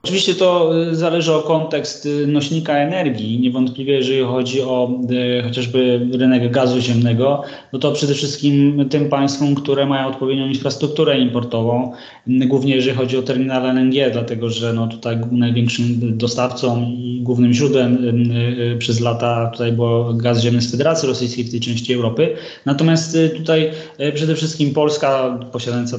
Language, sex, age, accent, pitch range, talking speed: Polish, male, 20-39, native, 120-140 Hz, 145 wpm